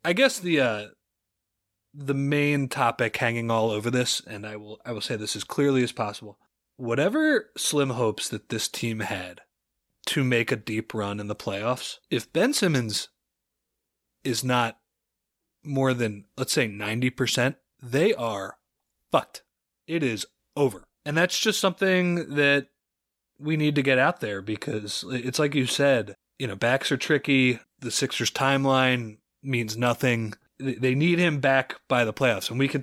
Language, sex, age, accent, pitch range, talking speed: English, male, 20-39, American, 110-145 Hz, 165 wpm